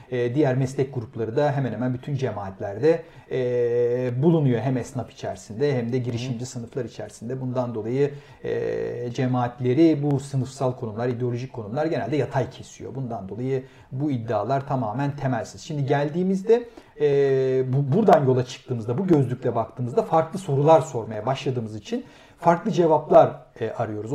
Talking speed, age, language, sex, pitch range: 135 wpm, 40-59, Turkish, male, 125-160 Hz